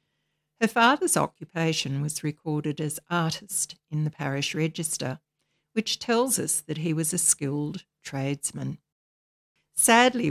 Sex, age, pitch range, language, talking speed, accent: female, 60-79, 145-170 Hz, English, 120 wpm, Australian